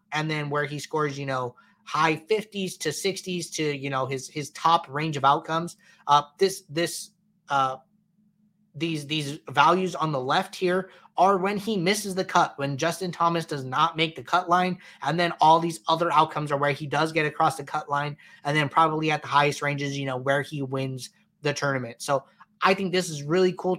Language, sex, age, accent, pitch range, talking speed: English, male, 20-39, American, 145-175 Hz, 205 wpm